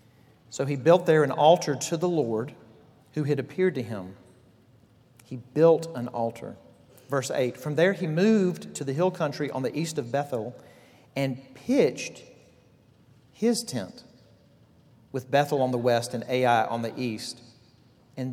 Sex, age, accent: male, 40-59, American